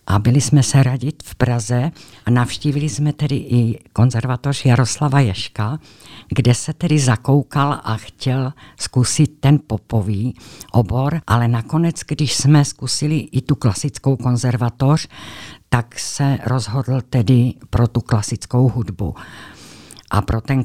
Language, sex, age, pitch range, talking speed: Czech, female, 50-69, 115-140 Hz, 130 wpm